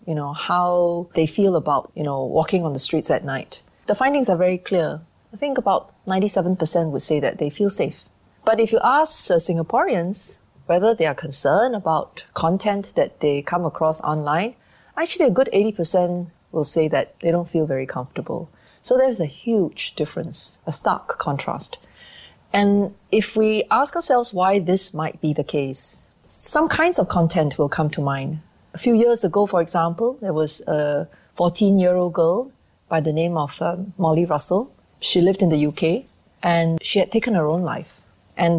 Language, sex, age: English, female, 30-49